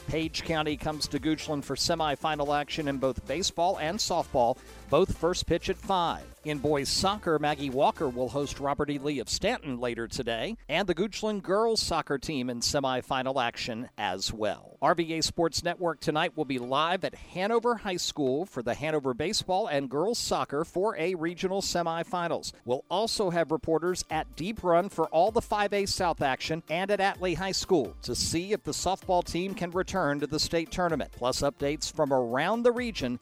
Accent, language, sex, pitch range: American, English, male, 140-185 Hz